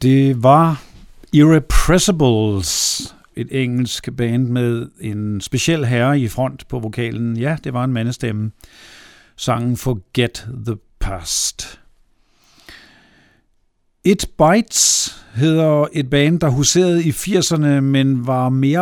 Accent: native